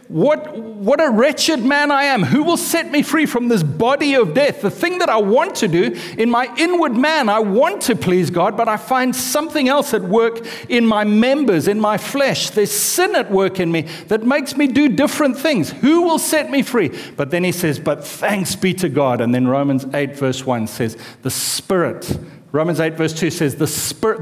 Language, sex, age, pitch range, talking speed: English, male, 60-79, 145-230 Hz, 220 wpm